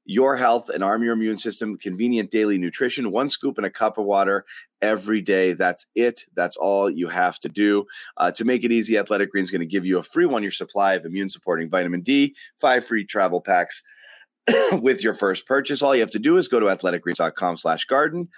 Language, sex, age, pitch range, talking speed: English, male, 30-49, 105-145 Hz, 220 wpm